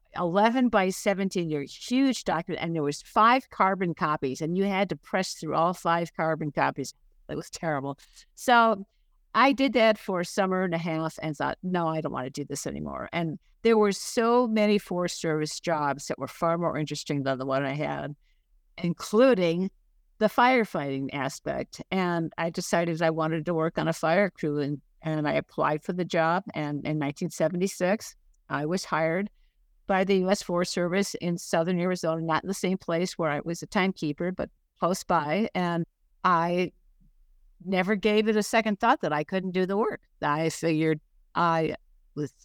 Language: English